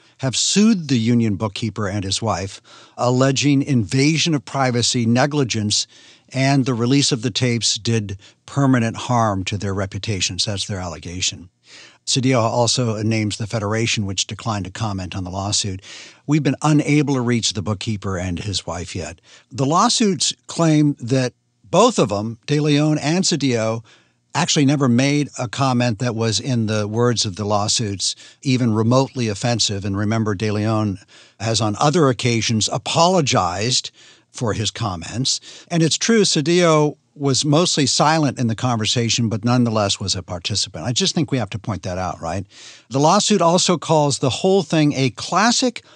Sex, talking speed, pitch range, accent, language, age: male, 160 wpm, 105-145 Hz, American, English, 60-79